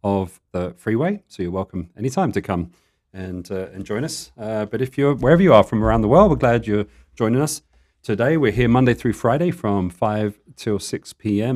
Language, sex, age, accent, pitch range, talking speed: English, male, 40-59, British, 95-120 Hz, 215 wpm